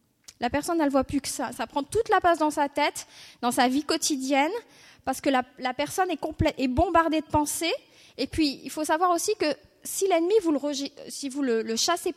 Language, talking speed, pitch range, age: French, 235 wpm, 260-330 Hz, 20-39